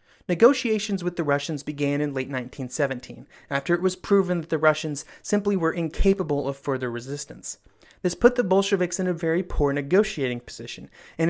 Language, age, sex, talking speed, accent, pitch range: English, 30-49, male, 170 wpm, American, 145-185 Hz